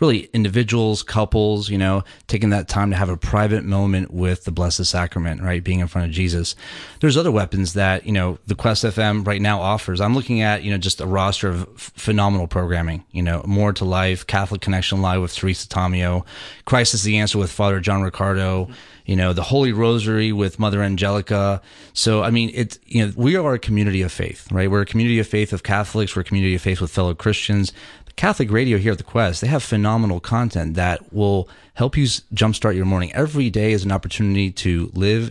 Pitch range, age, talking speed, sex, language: 95-110 Hz, 30-49, 210 wpm, male, English